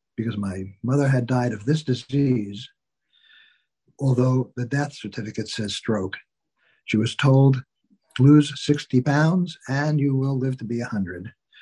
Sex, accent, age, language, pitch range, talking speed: male, American, 60-79, English, 115-150 Hz, 140 wpm